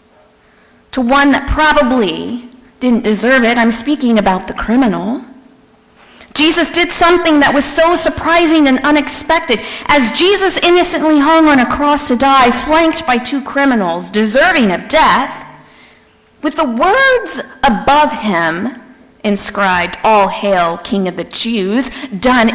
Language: English